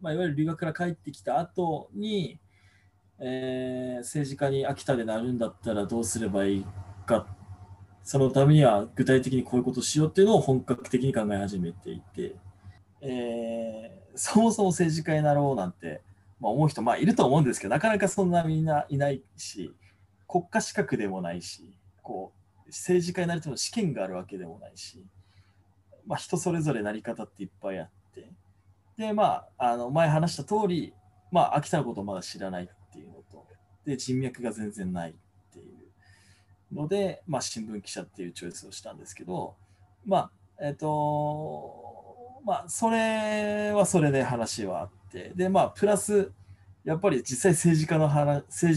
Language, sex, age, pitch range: Japanese, male, 20-39, 95-155 Hz